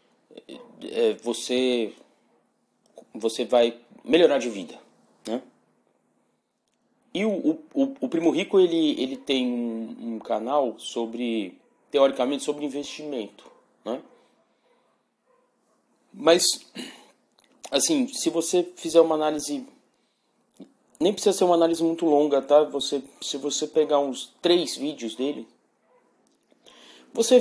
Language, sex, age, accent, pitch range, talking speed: Portuguese, male, 30-49, Brazilian, 125-180 Hz, 110 wpm